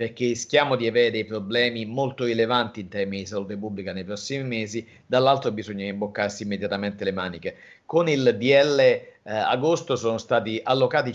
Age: 40-59